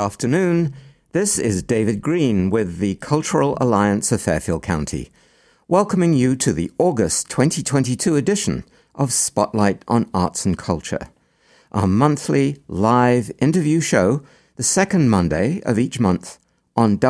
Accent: British